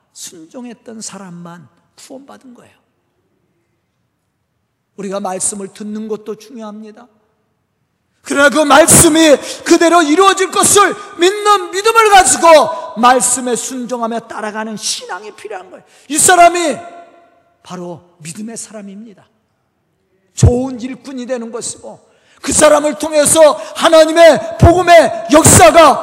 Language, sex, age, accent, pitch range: Korean, male, 40-59, native, 220-315 Hz